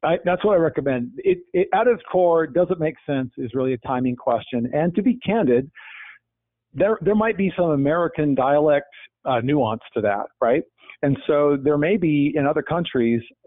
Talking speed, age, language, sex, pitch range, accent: 190 wpm, 50-69, English, male, 125-160 Hz, American